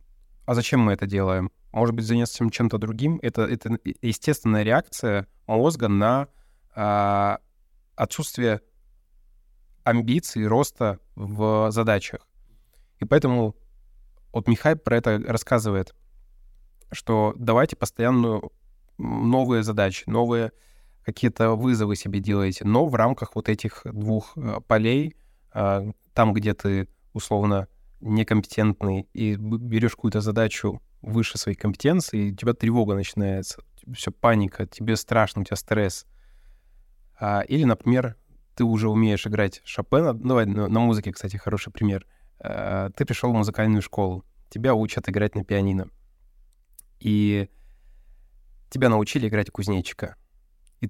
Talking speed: 120 wpm